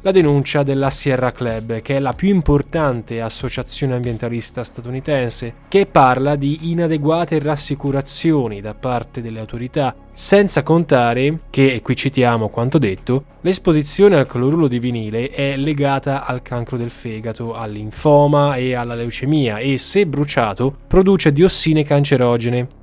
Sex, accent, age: male, native, 10-29